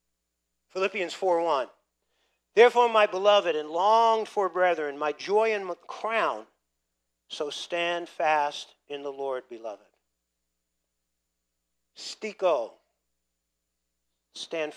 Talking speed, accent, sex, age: 95 wpm, American, male, 50-69